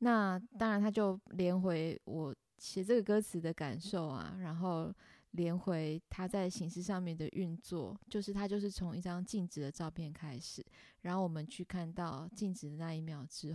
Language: Chinese